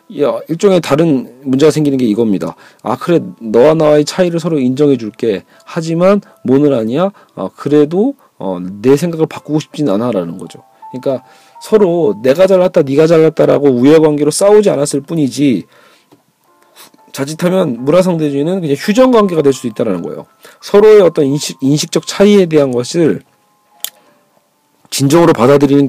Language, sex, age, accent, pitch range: Korean, male, 40-59, native, 140-175 Hz